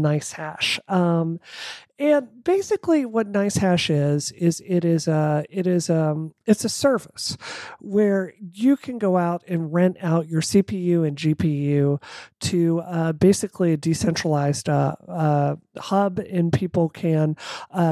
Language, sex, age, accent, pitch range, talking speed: English, male, 40-59, American, 155-195 Hz, 145 wpm